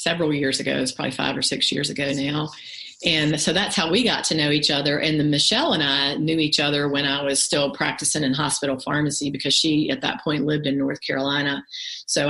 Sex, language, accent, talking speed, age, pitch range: female, English, American, 235 wpm, 40-59, 140-165 Hz